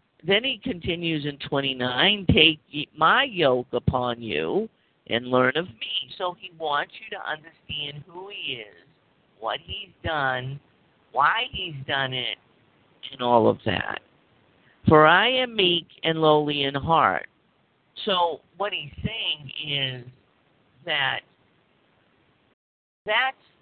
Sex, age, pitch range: male, 50-69, 130-175 Hz